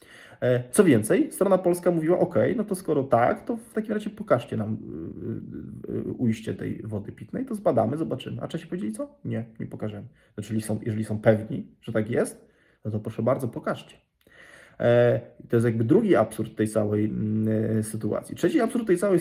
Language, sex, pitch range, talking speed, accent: Polish, male, 110-135 Hz, 165 wpm, native